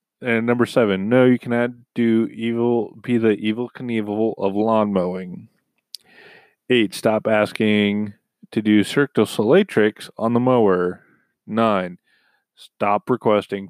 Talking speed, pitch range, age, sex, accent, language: 125 wpm, 95-115 Hz, 30-49, male, American, English